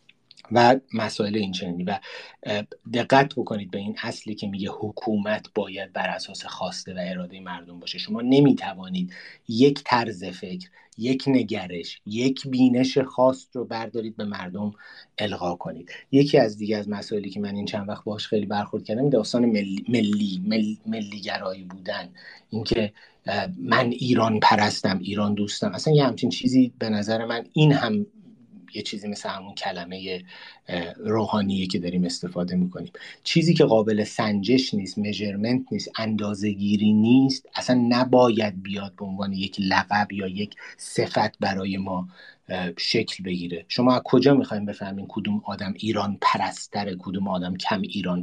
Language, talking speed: Persian, 145 wpm